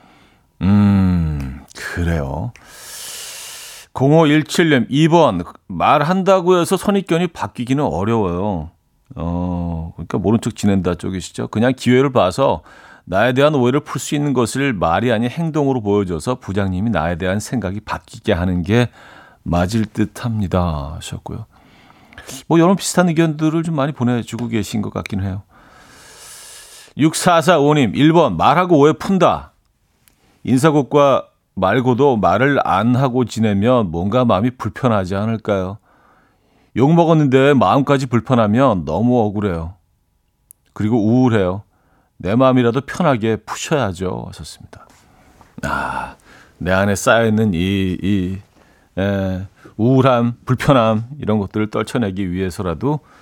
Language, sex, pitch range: Korean, male, 95-135 Hz